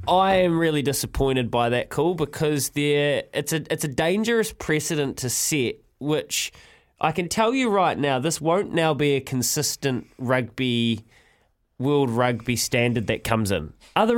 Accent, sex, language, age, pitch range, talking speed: Australian, male, English, 20-39, 115-155 Hz, 160 wpm